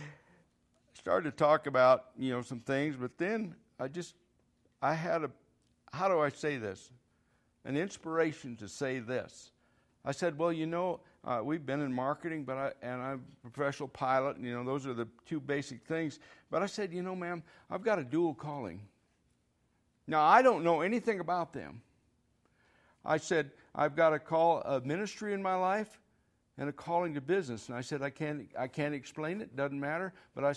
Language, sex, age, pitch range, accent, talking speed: English, male, 60-79, 135-165 Hz, American, 190 wpm